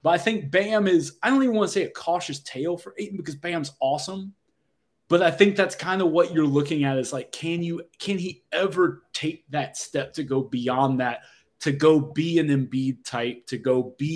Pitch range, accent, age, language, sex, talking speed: 130-155 Hz, American, 20-39, English, male, 225 wpm